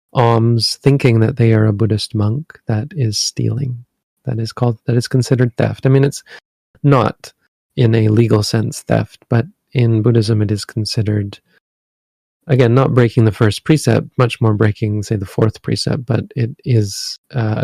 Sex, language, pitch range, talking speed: male, English, 110-125 Hz, 170 wpm